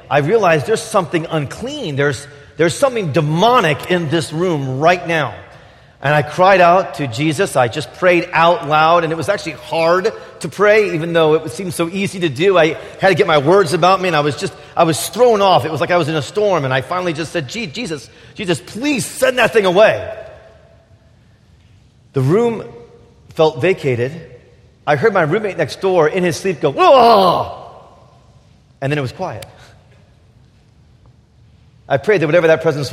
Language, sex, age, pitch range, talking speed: English, male, 40-59, 125-180 Hz, 190 wpm